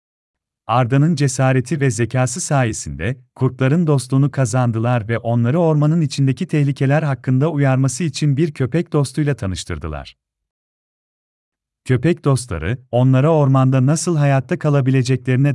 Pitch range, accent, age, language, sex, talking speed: 105-145 Hz, native, 40-59, Turkish, male, 105 wpm